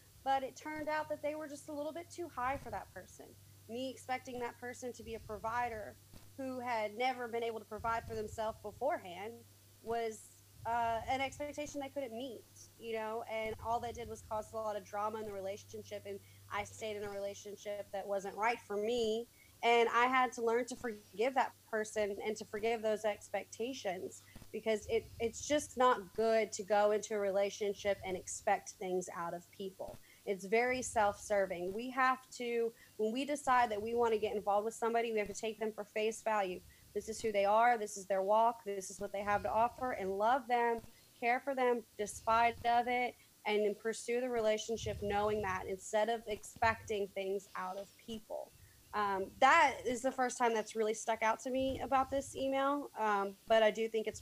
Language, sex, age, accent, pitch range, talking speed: English, female, 30-49, American, 205-245 Hz, 200 wpm